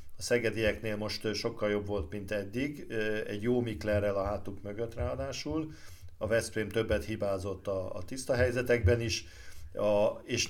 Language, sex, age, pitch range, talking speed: Hungarian, male, 50-69, 100-120 Hz, 150 wpm